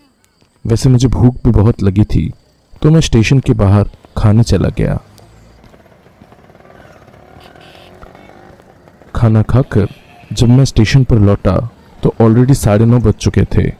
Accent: native